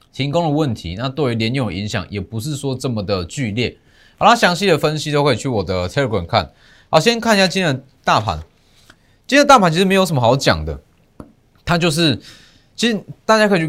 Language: Chinese